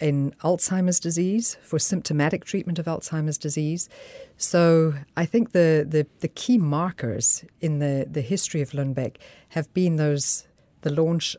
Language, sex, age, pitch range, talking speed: Danish, female, 50-69, 140-165 Hz, 150 wpm